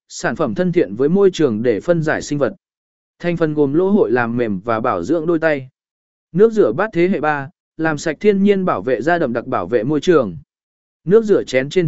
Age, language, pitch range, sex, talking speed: 20-39, Vietnamese, 145-195 Hz, male, 235 wpm